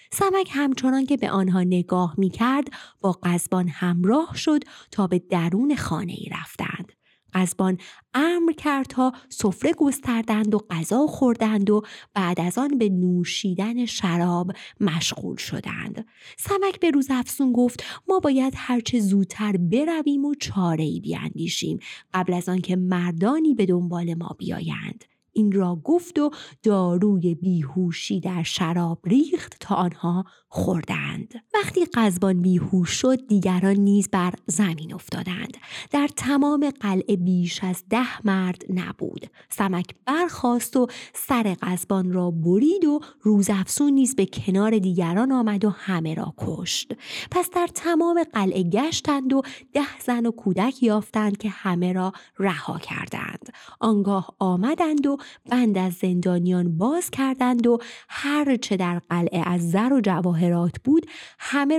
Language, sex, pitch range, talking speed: Persian, female, 185-260 Hz, 135 wpm